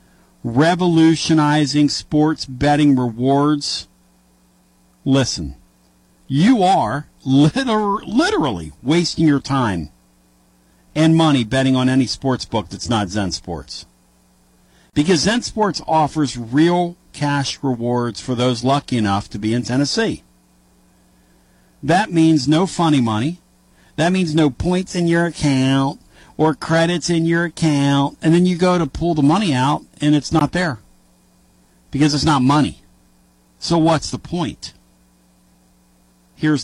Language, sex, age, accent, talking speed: English, male, 50-69, American, 125 wpm